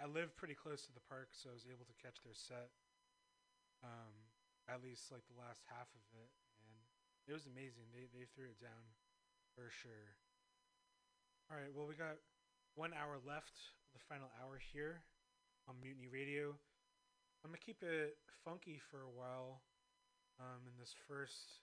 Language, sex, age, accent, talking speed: English, male, 30-49, American, 170 wpm